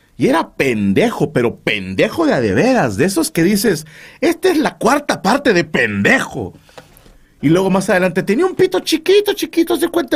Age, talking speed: 40-59, 185 wpm